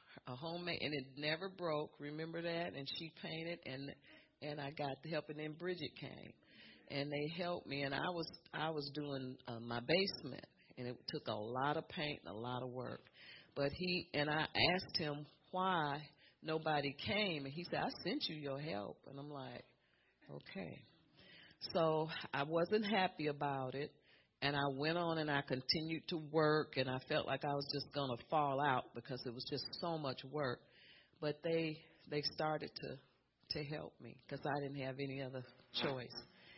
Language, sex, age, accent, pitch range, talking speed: English, female, 40-59, American, 130-160 Hz, 190 wpm